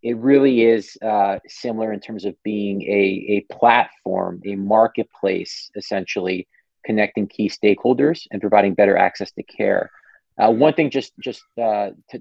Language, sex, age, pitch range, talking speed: English, male, 30-49, 100-120 Hz, 150 wpm